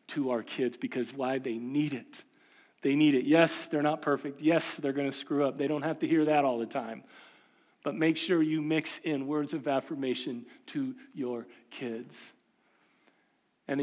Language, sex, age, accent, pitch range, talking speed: English, male, 40-59, American, 135-165 Hz, 185 wpm